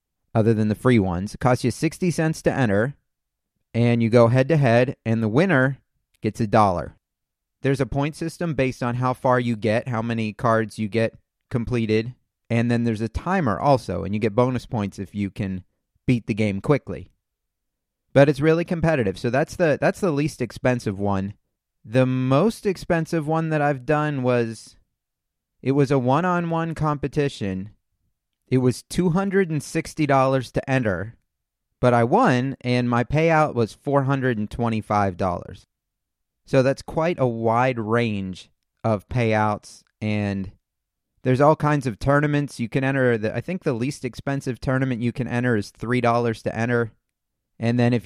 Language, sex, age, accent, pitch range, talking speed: English, male, 30-49, American, 110-135 Hz, 160 wpm